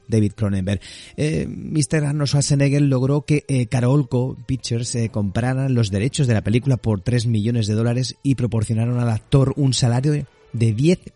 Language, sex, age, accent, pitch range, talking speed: Spanish, male, 30-49, Spanish, 100-125 Hz, 165 wpm